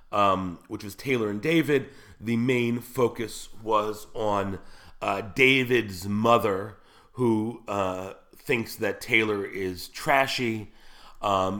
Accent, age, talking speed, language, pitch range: American, 40-59, 115 wpm, English, 95-125 Hz